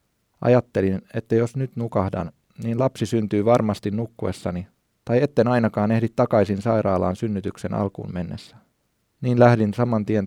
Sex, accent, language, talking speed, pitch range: male, native, Finnish, 135 wpm, 100-120 Hz